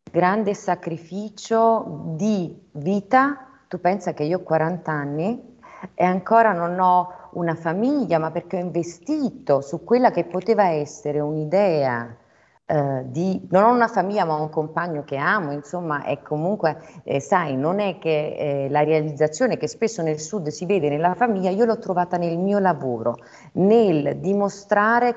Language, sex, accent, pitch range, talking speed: Italian, female, native, 150-200 Hz, 155 wpm